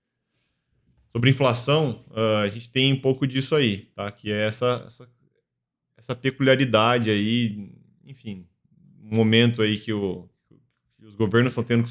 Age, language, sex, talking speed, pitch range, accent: 20-39, Portuguese, male, 145 wpm, 110-130 Hz, Brazilian